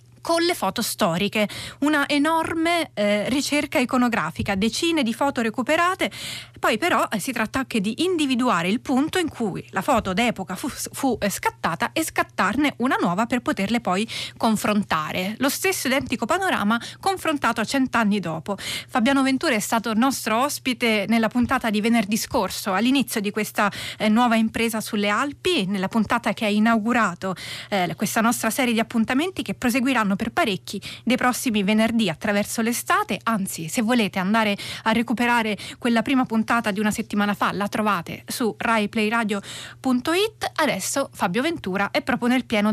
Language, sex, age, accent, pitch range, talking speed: Italian, female, 30-49, native, 210-265 Hz, 155 wpm